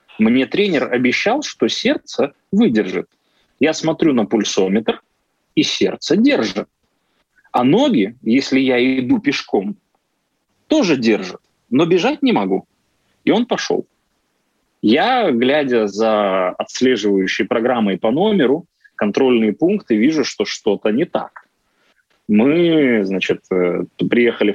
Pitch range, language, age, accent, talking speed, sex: 100-145 Hz, Russian, 30-49, native, 110 wpm, male